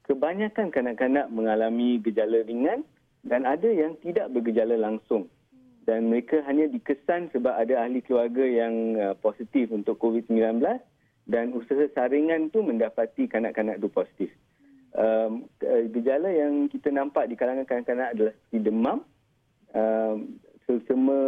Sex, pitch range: male, 110-150 Hz